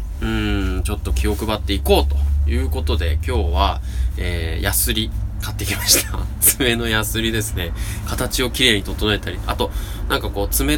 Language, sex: Japanese, male